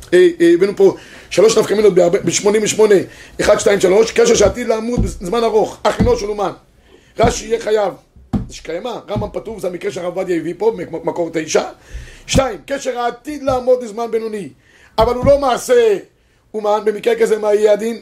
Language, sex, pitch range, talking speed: Hebrew, male, 180-240 Hz, 155 wpm